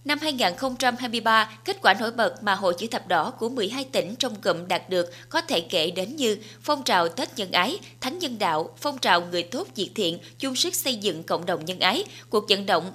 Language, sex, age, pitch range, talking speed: Vietnamese, female, 20-39, 180-260 Hz, 220 wpm